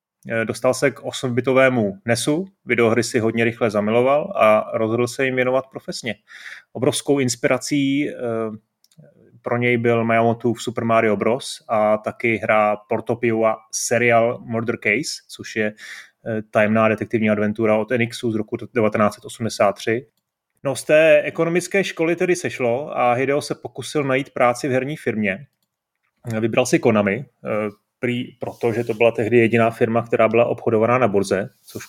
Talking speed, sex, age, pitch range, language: 145 wpm, male, 30-49, 115-130 Hz, Czech